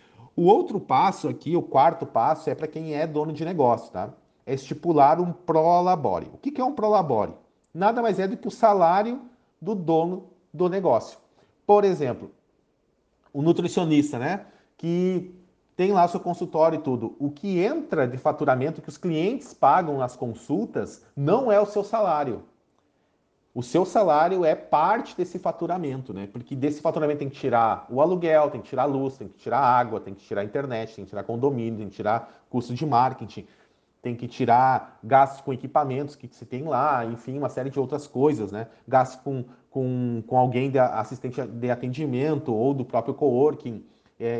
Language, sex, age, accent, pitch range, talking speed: Portuguese, male, 40-59, Brazilian, 125-170 Hz, 185 wpm